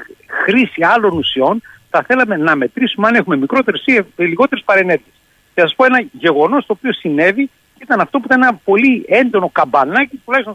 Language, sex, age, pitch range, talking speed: Greek, male, 60-79, 170-250 Hz, 170 wpm